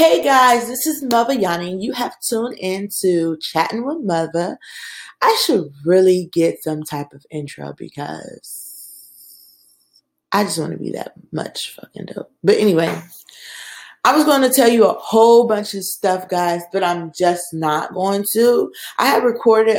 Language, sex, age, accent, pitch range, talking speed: English, female, 20-39, American, 170-235 Hz, 165 wpm